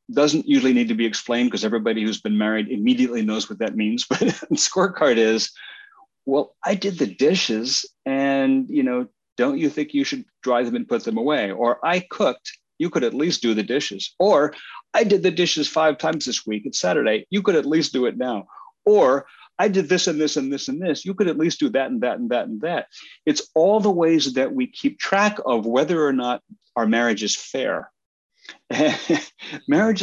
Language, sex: English, male